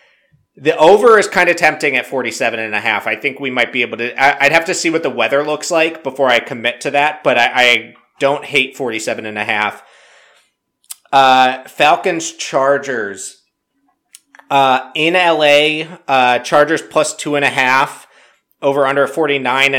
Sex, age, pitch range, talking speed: male, 30-49, 125-150 Hz, 175 wpm